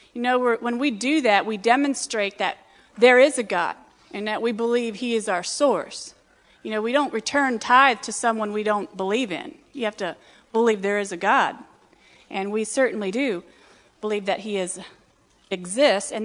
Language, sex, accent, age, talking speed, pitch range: English, female, American, 40-59, 185 wpm, 215-285 Hz